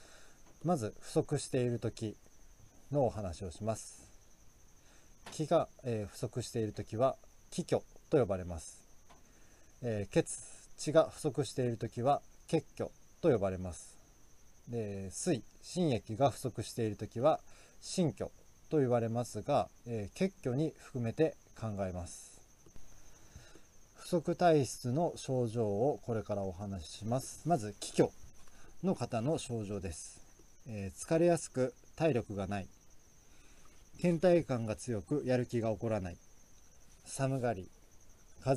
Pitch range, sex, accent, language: 100-140 Hz, male, native, Japanese